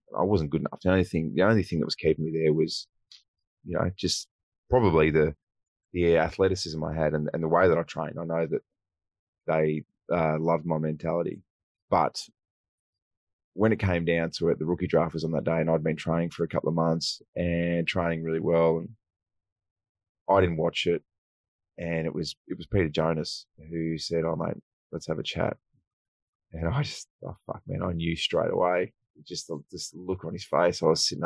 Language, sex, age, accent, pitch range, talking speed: English, male, 20-39, Australian, 80-95 Hz, 205 wpm